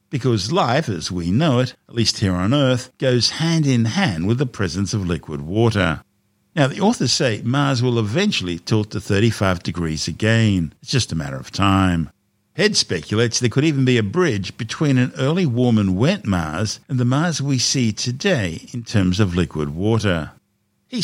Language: English